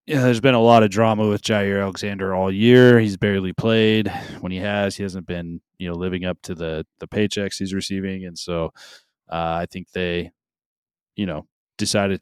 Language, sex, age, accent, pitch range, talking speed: English, male, 20-39, American, 90-105 Hz, 195 wpm